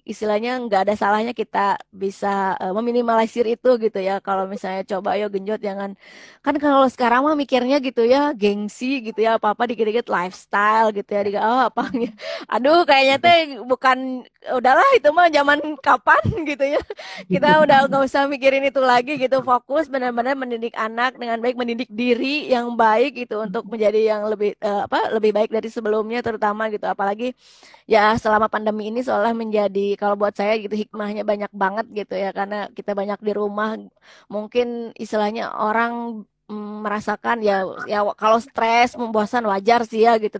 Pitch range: 210-250 Hz